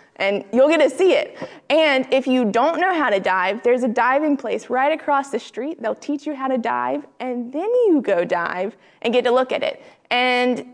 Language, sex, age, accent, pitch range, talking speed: English, female, 20-39, American, 215-280 Hz, 225 wpm